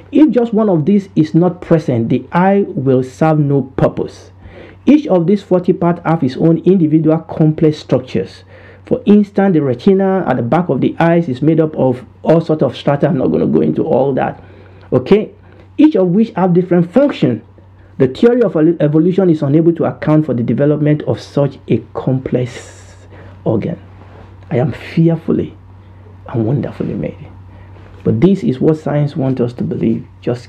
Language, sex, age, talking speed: English, male, 50-69, 175 wpm